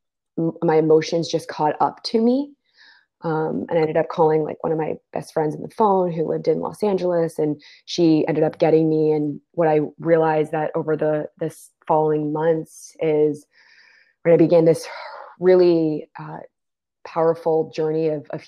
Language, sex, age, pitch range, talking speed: English, female, 20-39, 155-175 Hz, 175 wpm